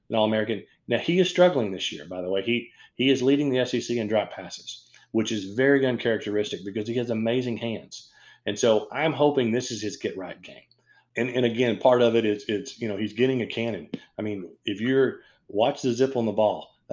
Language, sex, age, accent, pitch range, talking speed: English, male, 40-59, American, 105-125 Hz, 225 wpm